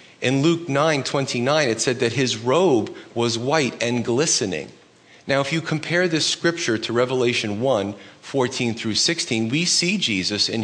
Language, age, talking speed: English, 40-59, 160 wpm